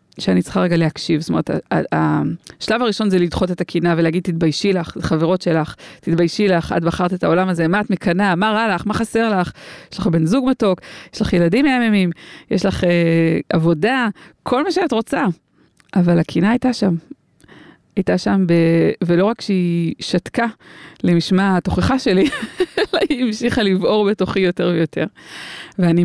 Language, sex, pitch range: Hebrew, female, 175-230 Hz